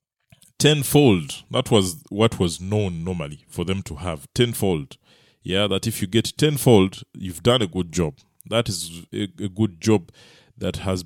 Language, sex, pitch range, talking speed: English, male, 95-135 Hz, 165 wpm